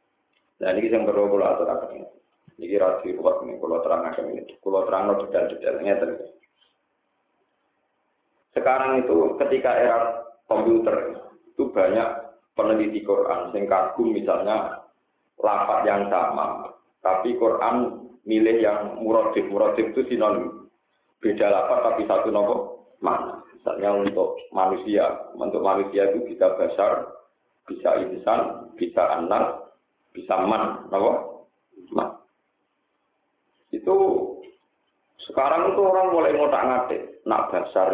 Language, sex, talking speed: Indonesian, male, 110 wpm